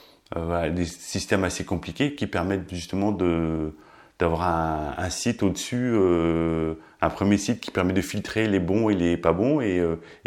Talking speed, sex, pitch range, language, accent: 180 wpm, male, 85-110 Hz, English, French